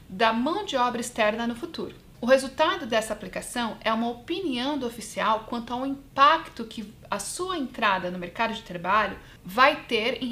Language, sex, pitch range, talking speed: Portuguese, female, 215-285 Hz, 175 wpm